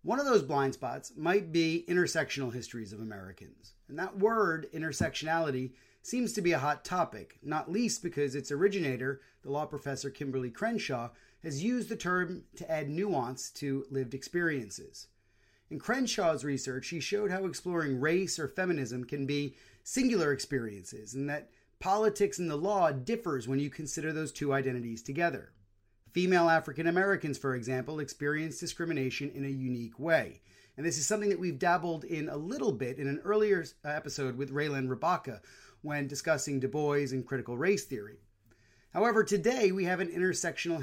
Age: 30-49